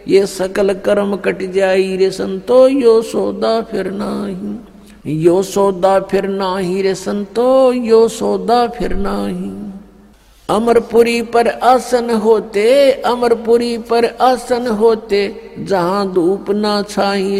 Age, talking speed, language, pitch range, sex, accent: 60-79, 110 wpm, Hindi, 195-230 Hz, male, native